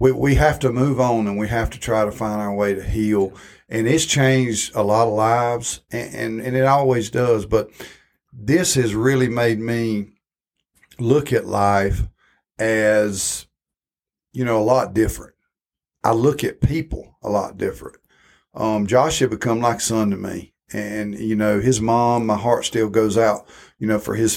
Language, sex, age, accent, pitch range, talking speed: English, male, 50-69, American, 105-125 Hz, 185 wpm